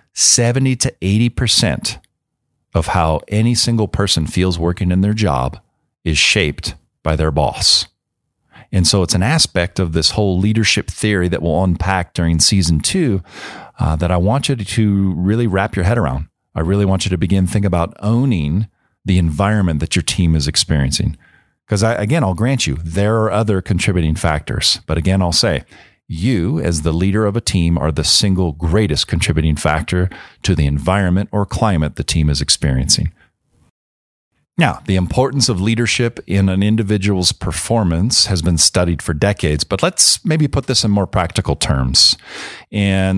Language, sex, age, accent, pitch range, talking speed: English, male, 40-59, American, 85-105 Hz, 170 wpm